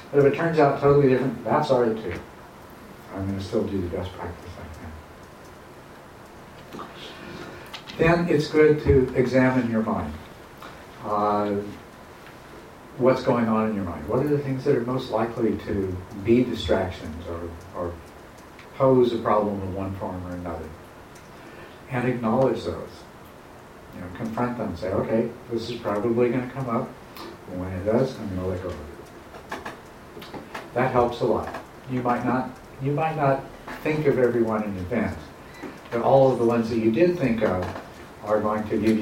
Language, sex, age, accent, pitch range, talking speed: English, male, 60-79, American, 90-125 Hz, 165 wpm